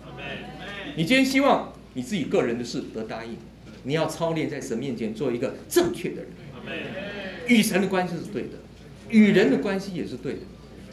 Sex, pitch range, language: male, 155-225 Hz, Chinese